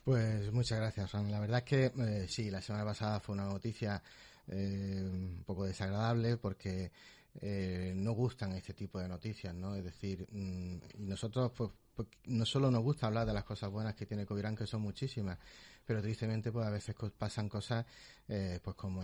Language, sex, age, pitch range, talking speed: Spanish, male, 30-49, 90-105 Hz, 190 wpm